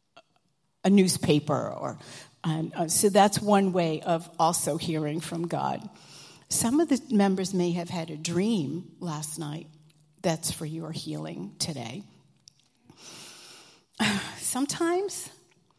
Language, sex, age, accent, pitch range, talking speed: English, female, 50-69, American, 165-230 Hz, 120 wpm